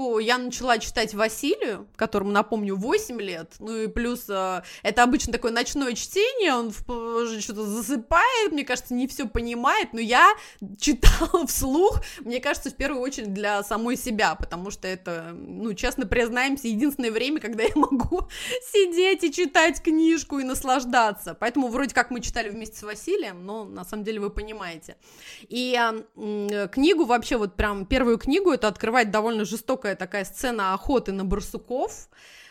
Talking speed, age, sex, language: 155 wpm, 20-39, female, Russian